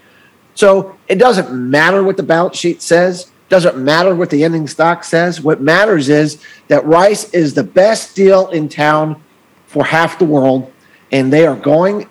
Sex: male